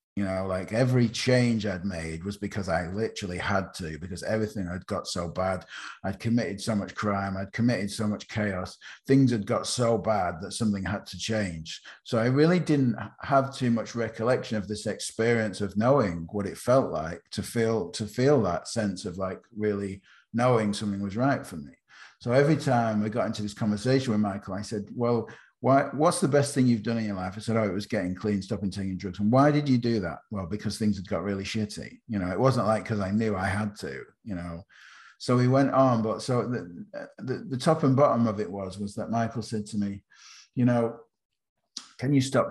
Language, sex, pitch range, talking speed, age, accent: English, male, 100-120 Hz, 220 wpm, 50-69, British